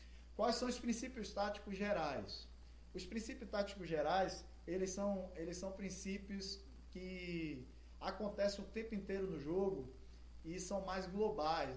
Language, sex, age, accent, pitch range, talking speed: Portuguese, male, 20-39, Brazilian, 150-195 Hz, 125 wpm